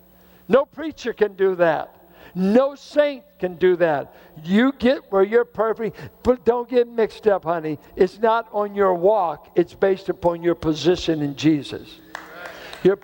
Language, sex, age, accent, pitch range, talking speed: English, male, 60-79, American, 170-230 Hz, 155 wpm